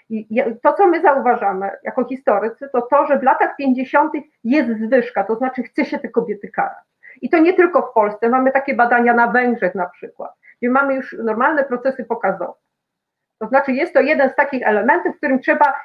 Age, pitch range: 40-59, 225-275 Hz